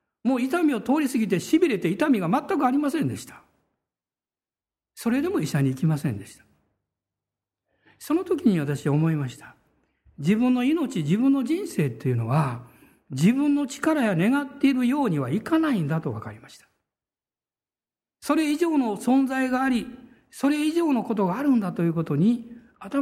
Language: Japanese